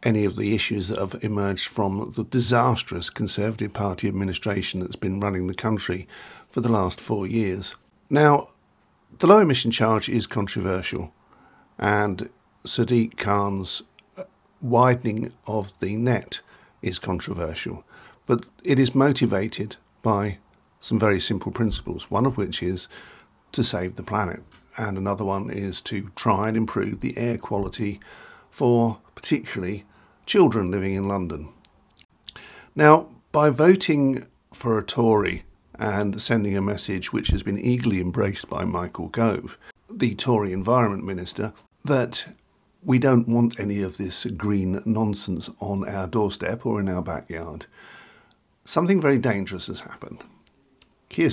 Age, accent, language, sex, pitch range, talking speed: 50-69, British, English, male, 95-120 Hz, 135 wpm